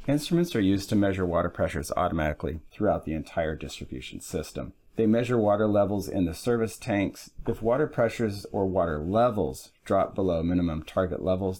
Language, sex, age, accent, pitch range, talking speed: English, male, 40-59, American, 90-115 Hz, 165 wpm